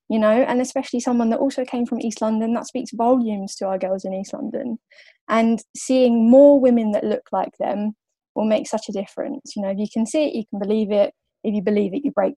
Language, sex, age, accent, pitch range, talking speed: English, female, 10-29, British, 210-260 Hz, 245 wpm